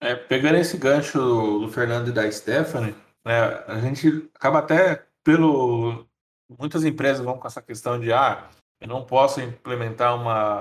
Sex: male